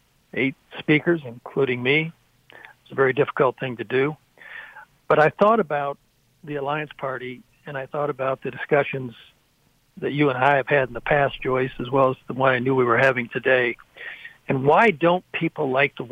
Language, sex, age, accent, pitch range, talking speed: English, male, 60-79, American, 130-155 Hz, 190 wpm